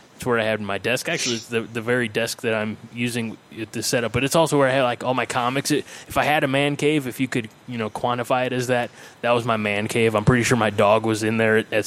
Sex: male